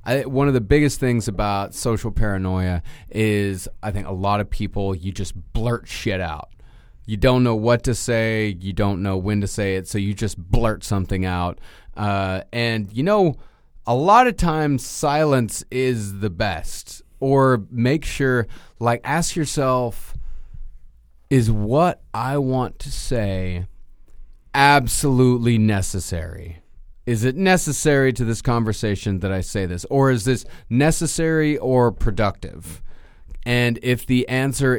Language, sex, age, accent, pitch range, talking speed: English, male, 30-49, American, 100-130 Hz, 145 wpm